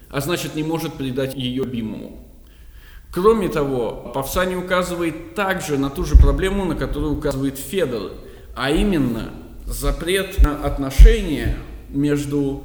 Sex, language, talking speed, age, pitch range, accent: male, Russian, 125 wpm, 20-39, 130-160 Hz, native